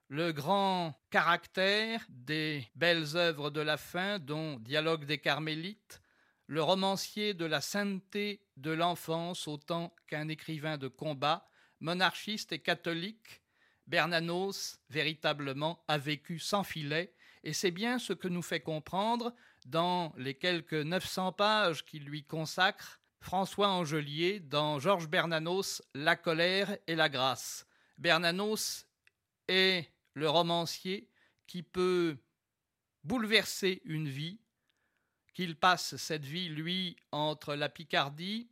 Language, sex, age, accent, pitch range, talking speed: French, male, 40-59, French, 150-190 Hz, 120 wpm